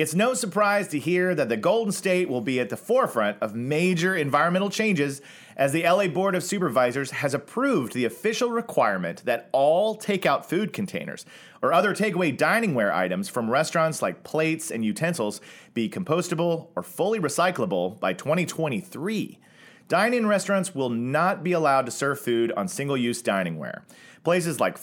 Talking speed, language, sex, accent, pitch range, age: 160 wpm, English, male, American, 130-185 Hz, 40-59